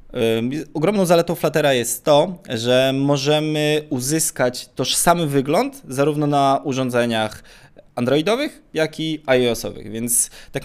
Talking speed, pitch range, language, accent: 105 wpm, 110-150 Hz, Polish, native